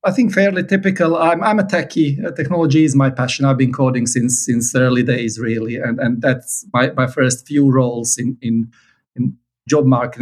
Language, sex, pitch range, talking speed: English, male, 130-165 Hz, 195 wpm